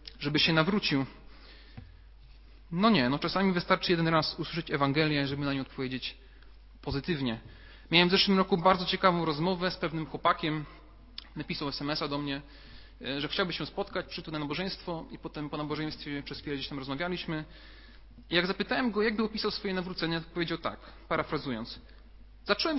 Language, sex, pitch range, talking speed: Polish, male, 150-195 Hz, 160 wpm